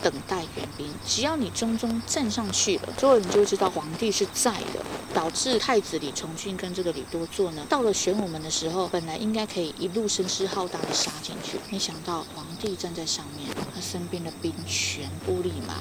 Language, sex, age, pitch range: Chinese, female, 20-39, 165-225 Hz